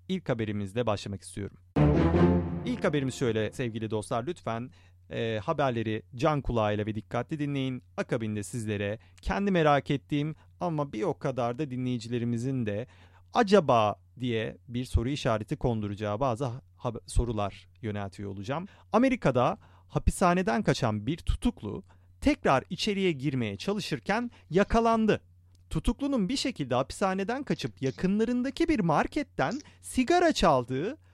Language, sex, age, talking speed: Turkish, male, 40-59, 115 wpm